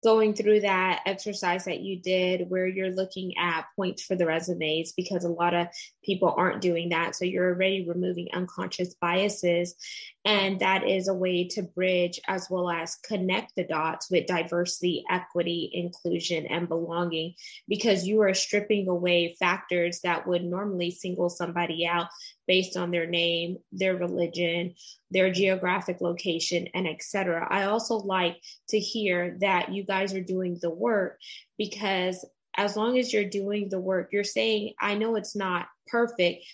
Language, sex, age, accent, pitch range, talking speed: English, female, 20-39, American, 175-200 Hz, 165 wpm